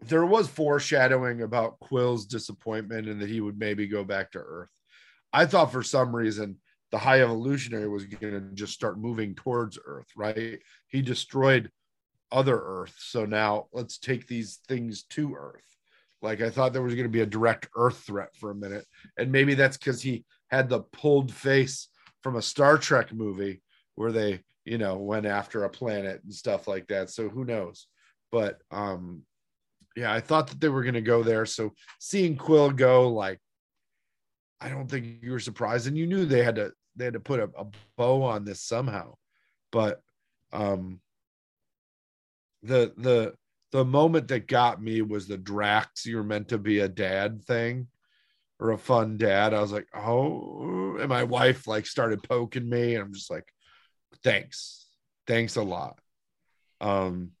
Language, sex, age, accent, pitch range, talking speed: English, male, 40-59, American, 105-130 Hz, 180 wpm